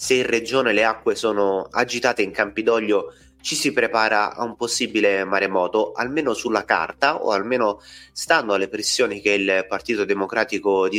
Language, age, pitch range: Italian, 30-49, 100-155 Hz